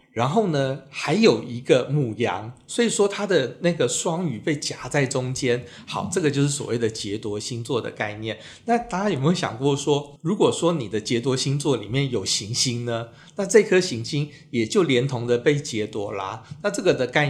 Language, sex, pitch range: Chinese, male, 115-150 Hz